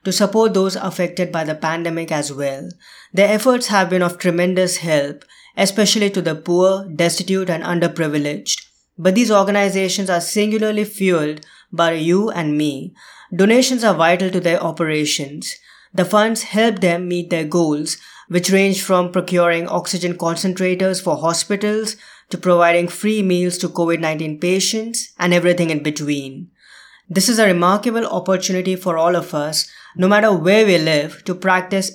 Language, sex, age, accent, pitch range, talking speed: English, female, 20-39, Indian, 170-200 Hz, 150 wpm